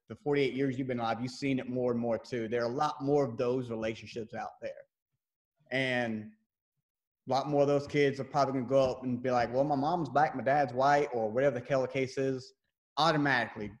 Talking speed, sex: 225 wpm, male